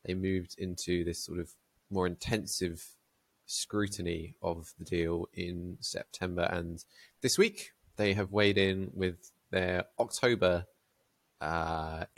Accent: British